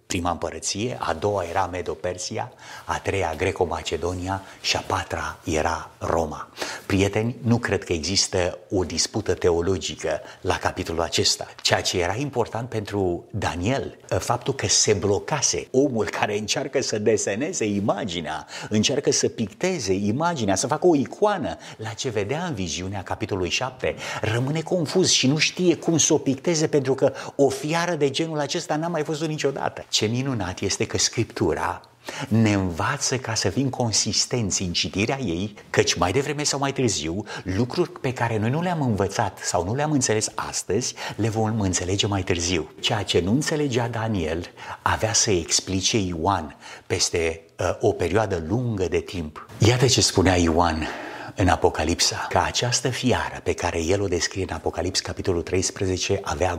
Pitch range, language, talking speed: 95-140 Hz, Romanian, 155 wpm